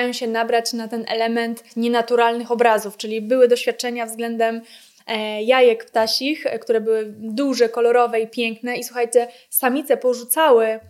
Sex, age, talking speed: female, 20-39, 125 wpm